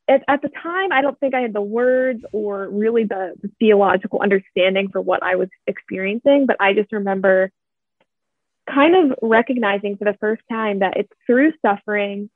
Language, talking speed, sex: English, 175 wpm, female